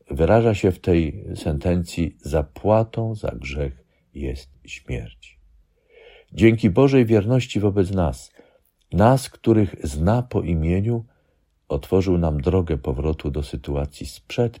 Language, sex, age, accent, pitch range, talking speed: Polish, male, 50-69, native, 75-110 Hz, 110 wpm